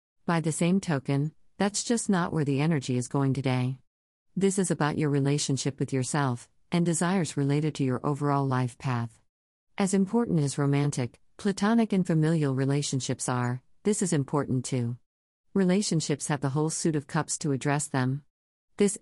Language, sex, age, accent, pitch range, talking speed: English, female, 50-69, American, 130-165 Hz, 165 wpm